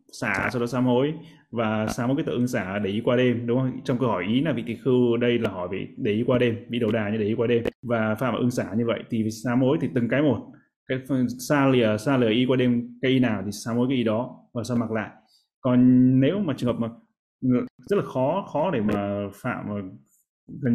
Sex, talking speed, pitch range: male, 255 wpm, 115-130 Hz